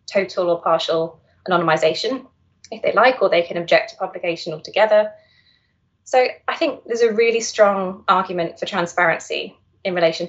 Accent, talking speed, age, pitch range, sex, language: British, 150 wpm, 20-39, 180-230 Hz, female, English